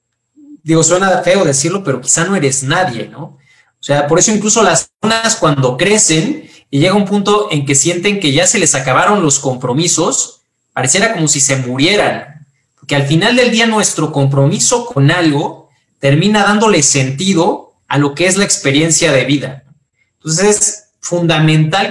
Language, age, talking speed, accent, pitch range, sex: Spanish, 30-49, 165 wpm, Mexican, 145-205 Hz, male